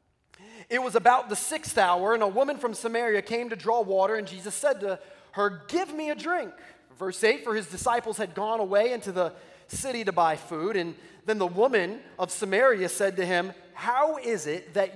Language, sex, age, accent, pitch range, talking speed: English, male, 30-49, American, 150-230 Hz, 205 wpm